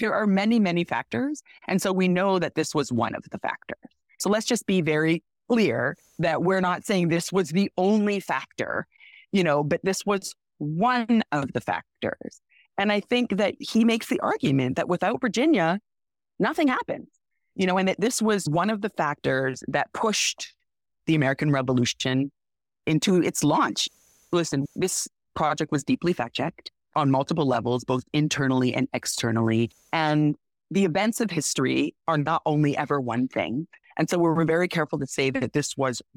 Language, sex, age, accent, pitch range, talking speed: English, female, 30-49, American, 135-195 Hz, 175 wpm